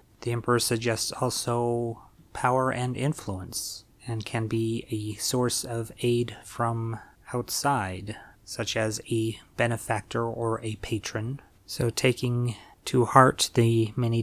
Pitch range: 110-125 Hz